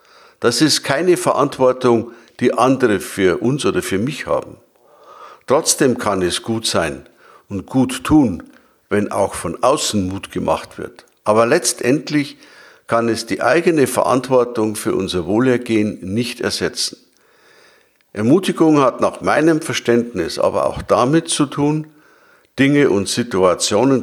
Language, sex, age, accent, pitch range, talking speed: German, male, 60-79, German, 110-145 Hz, 130 wpm